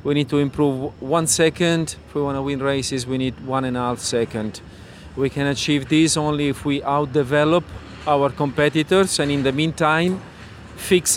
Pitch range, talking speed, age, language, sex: 150-170 Hz, 185 wpm, 40-59, English, male